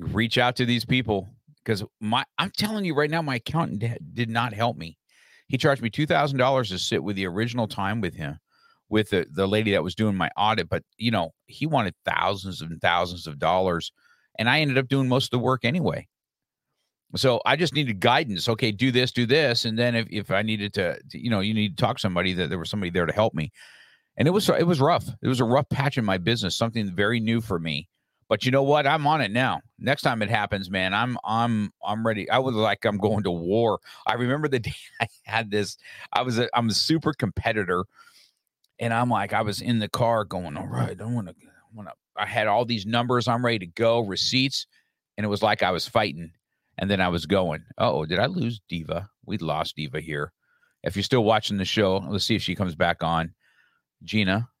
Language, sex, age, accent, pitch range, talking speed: English, male, 50-69, American, 95-125 Hz, 230 wpm